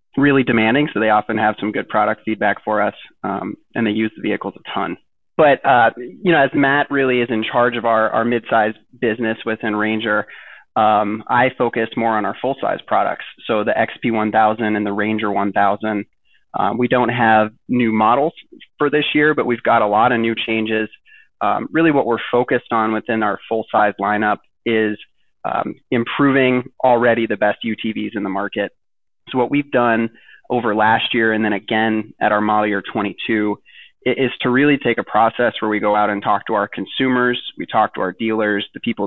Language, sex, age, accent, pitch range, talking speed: English, male, 20-39, American, 105-120 Hz, 195 wpm